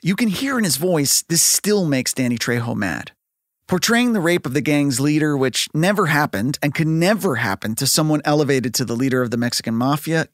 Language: English